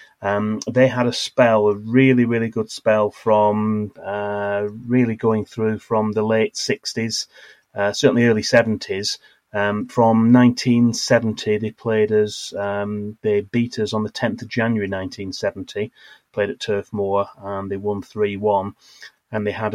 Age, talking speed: 30-49, 145 wpm